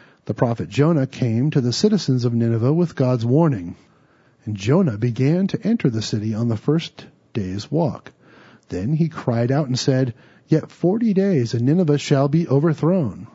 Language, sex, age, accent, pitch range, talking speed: English, male, 40-59, American, 115-155 Hz, 170 wpm